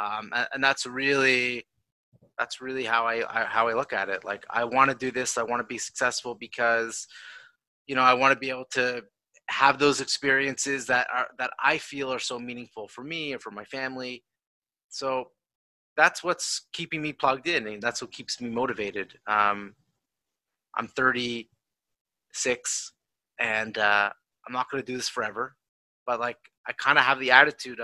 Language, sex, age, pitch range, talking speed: English, male, 30-49, 120-150 Hz, 180 wpm